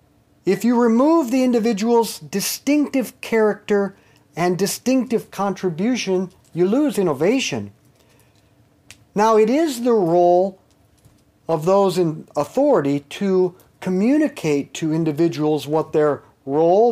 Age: 50-69